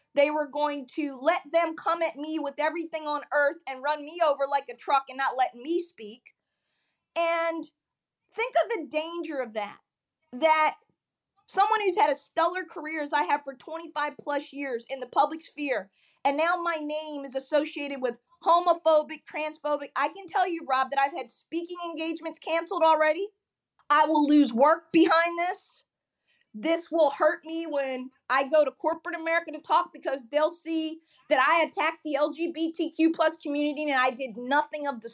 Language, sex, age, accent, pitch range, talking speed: English, female, 30-49, American, 275-335 Hz, 180 wpm